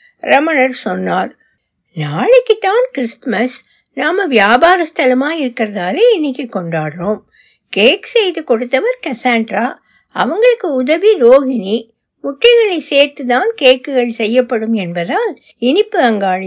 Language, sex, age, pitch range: Tamil, female, 60-79, 220-315 Hz